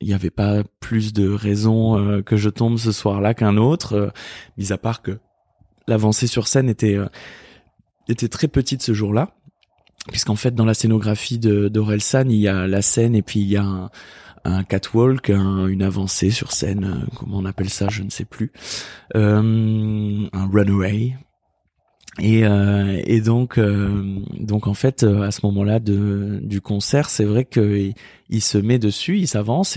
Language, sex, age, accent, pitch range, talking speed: French, male, 20-39, French, 100-115 Hz, 180 wpm